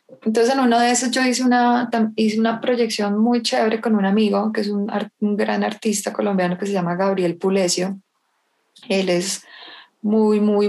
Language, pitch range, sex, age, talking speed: English, 185-220 Hz, female, 20-39, 185 wpm